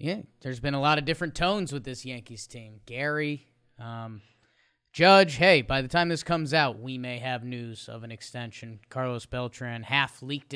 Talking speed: 190 wpm